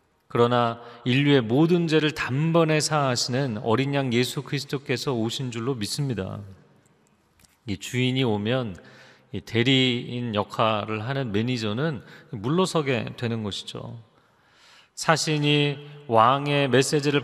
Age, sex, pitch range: 40-59, male, 115-150 Hz